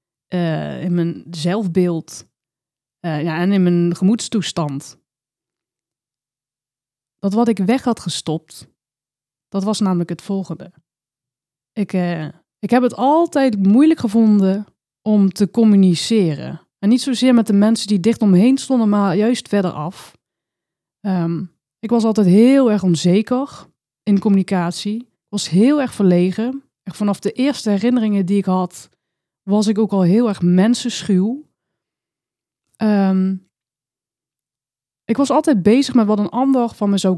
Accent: Dutch